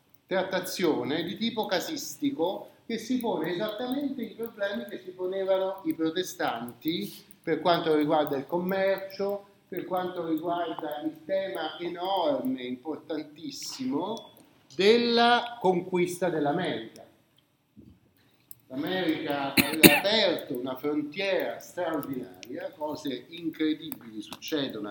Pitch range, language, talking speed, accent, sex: 145-195 Hz, Italian, 95 wpm, native, male